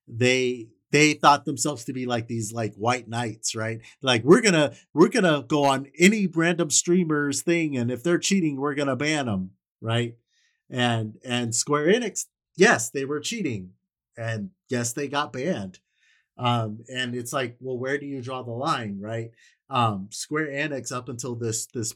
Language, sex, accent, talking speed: English, male, American, 175 wpm